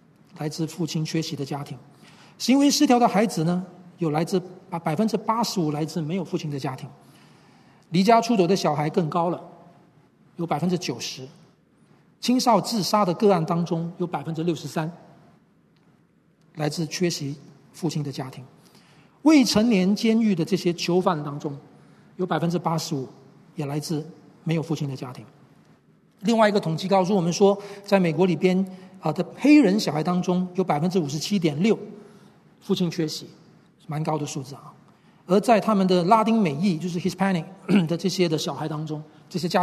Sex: male